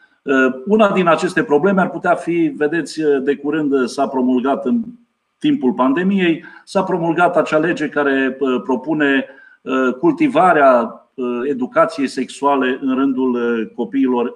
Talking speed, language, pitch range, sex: 115 wpm, Romanian, 135-195 Hz, male